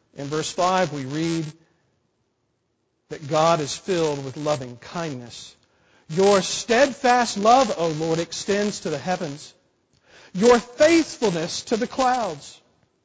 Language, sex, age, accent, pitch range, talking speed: English, male, 50-69, American, 150-215 Hz, 120 wpm